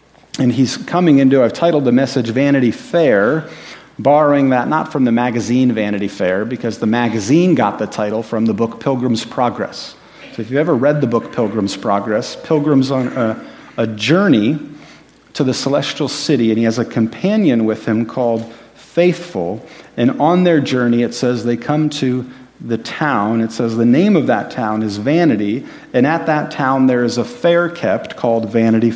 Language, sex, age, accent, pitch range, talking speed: English, male, 40-59, American, 115-145 Hz, 180 wpm